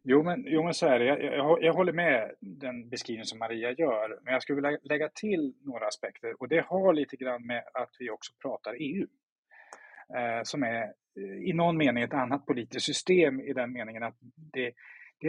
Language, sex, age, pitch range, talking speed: English, male, 30-49, 130-180 Hz, 175 wpm